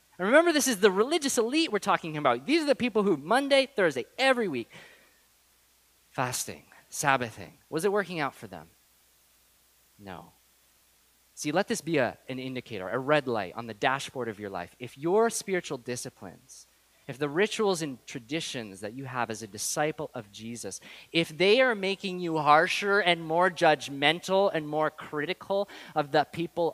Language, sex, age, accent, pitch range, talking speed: English, male, 30-49, American, 115-175 Hz, 170 wpm